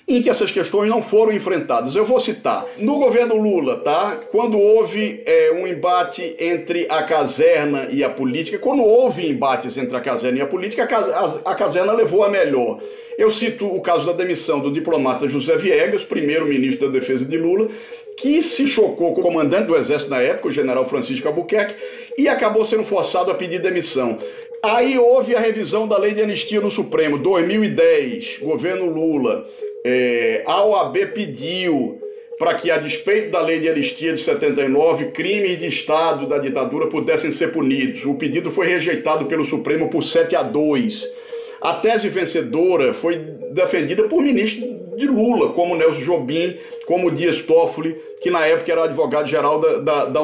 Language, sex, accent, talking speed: Portuguese, male, Brazilian, 175 wpm